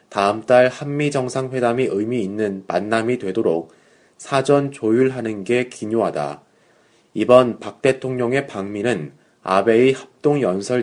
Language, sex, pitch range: Korean, male, 110-135 Hz